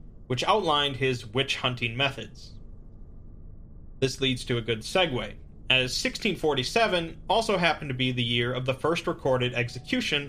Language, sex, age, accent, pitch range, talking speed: English, male, 30-49, American, 110-145 Hz, 140 wpm